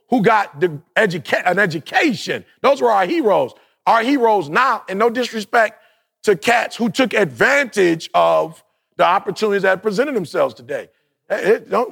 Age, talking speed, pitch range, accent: 40-59, 150 wpm, 175-235 Hz, American